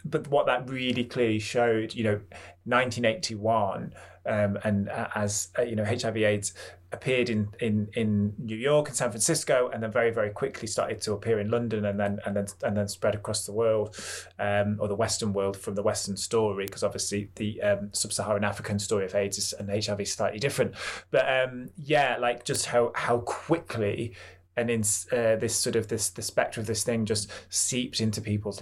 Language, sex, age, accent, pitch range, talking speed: English, male, 20-39, British, 100-120 Hz, 195 wpm